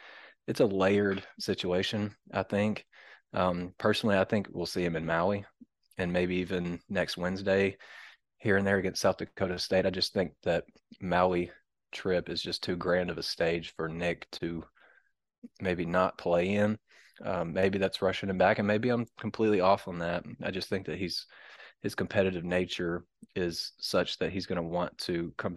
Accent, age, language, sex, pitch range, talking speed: American, 30-49, English, male, 85-95 Hz, 180 wpm